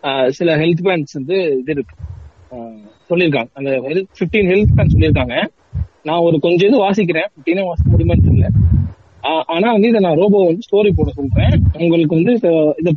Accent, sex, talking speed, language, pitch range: native, male, 70 wpm, Tamil, 130-195 Hz